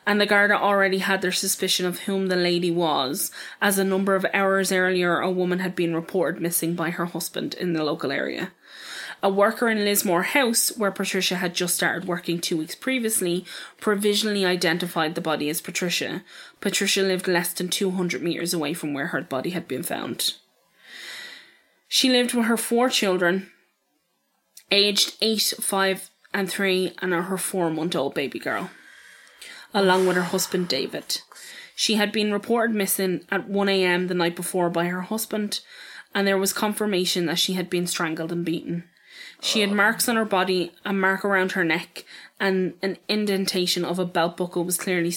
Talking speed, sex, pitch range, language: 175 wpm, female, 175-200 Hz, English